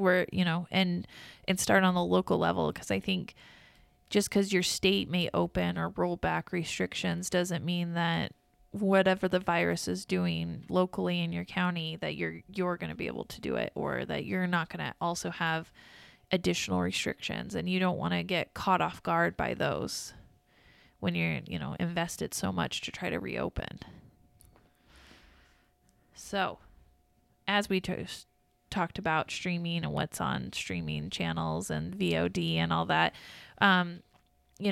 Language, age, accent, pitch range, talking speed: English, 20-39, American, 150-190 Hz, 165 wpm